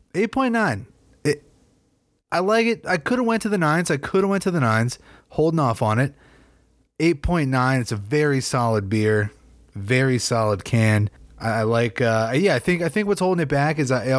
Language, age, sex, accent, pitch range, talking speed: English, 30-49, male, American, 105-145 Hz, 200 wpm